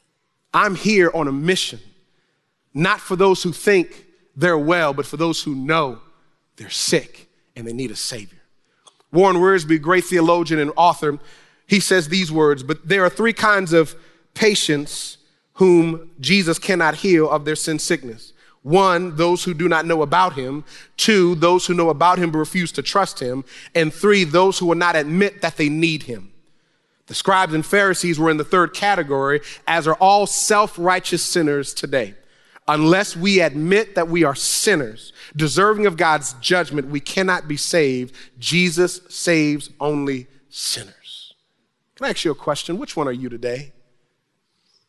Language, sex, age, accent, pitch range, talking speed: English, male, 30-49, American, 150-200 Hz, 165 wpm